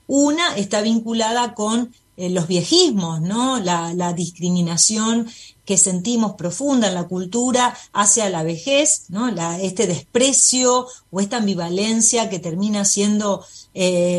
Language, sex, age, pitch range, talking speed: Spanish, female, 30-49, 180-245 Hz, 120 wpm